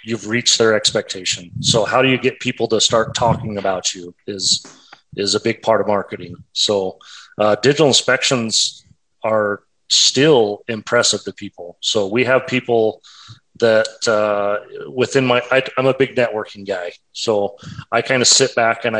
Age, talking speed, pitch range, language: 30-49, 165 wpm, 100-115 Hz, English